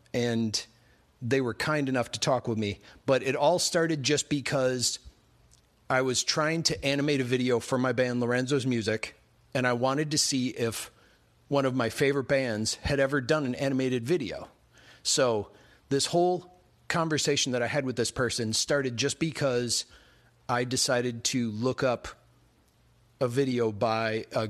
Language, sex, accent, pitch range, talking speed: English, male, American, 115-140 Hz, 160 wpm